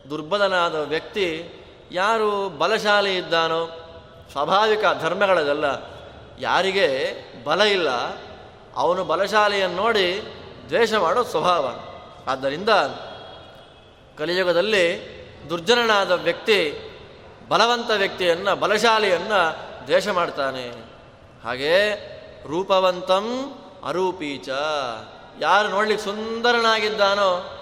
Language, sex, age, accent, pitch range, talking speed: Kannada, male, 20-39, native, 170-220 Hz, 65 wpm